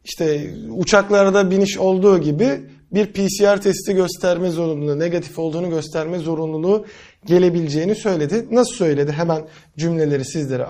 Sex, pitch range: male, 155-195 Hz